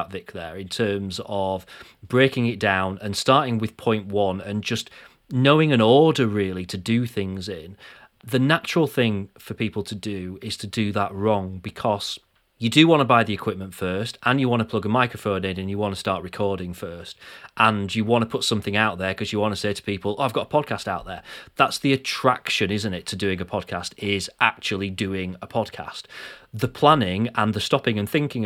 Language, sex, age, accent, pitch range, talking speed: English, male, 30-49, British, 100-130 Hz, 215 wpm